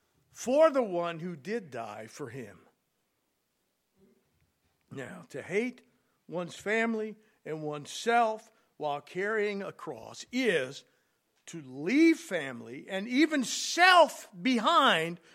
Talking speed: 110 wpm